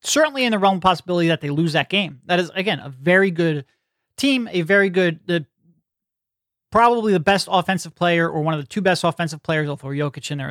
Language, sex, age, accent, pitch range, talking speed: English, male, 30-49, American, 155-190 Hz, 225 wpm